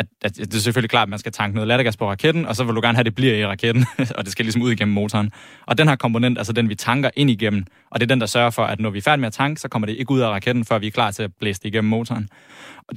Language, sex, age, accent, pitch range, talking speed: Danish, male, 20-39, native, 115-145 Hz, 345 wpm